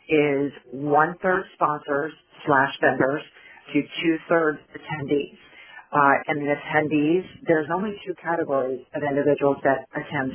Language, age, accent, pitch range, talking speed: English, 40-59, American, 140-155 Hz, 115 wpm